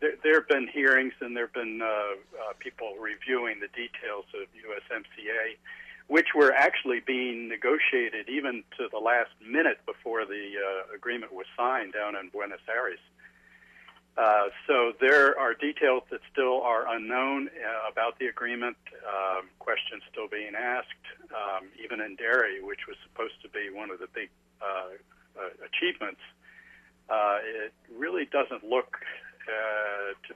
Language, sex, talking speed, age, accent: English, male, 150 wpm, 60-79, American